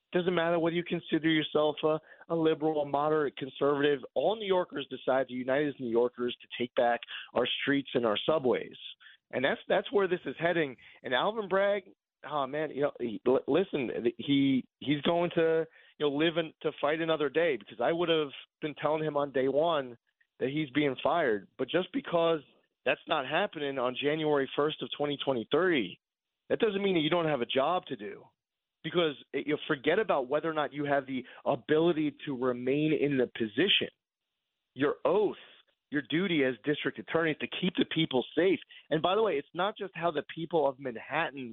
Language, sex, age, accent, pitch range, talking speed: English, male, 30-49, American, 140-170 Hz, 190 wpm